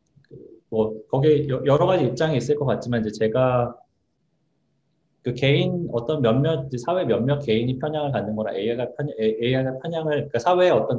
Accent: native